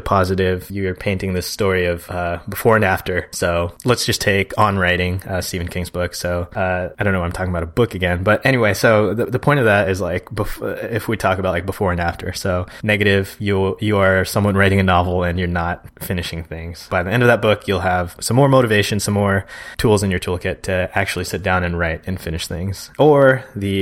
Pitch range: 90-105 Hz